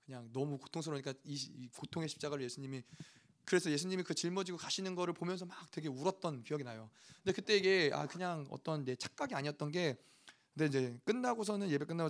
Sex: male